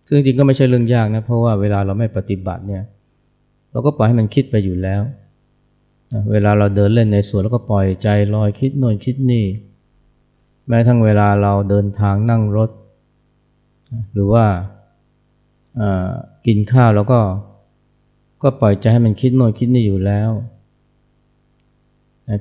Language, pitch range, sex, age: Thai, 100-125 Hz, male, 20-39